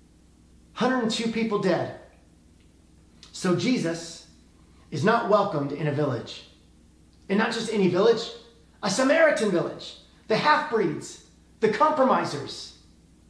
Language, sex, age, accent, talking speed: English, male, 30-49, American, 105 wpm